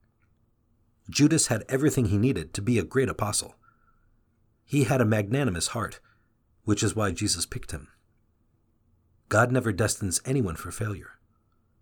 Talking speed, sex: 135 wpm, male